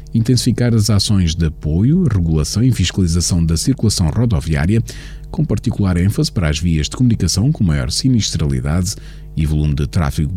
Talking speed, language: 150 wpm, Portuguese